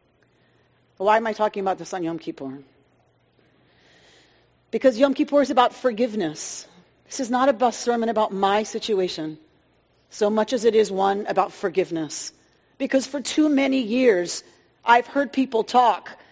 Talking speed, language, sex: 150 wpm, English, female